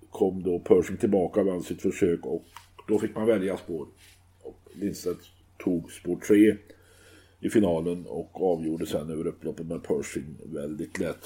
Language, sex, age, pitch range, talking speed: Swedish, male, 50-69, 90-105 Hz, 155 wpm